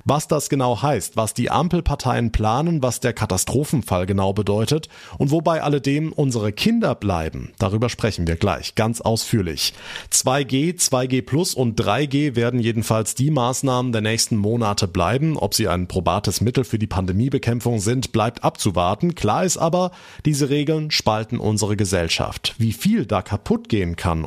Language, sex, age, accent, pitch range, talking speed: German, male, 30-49, German, 105-140 Hz, 155 wpm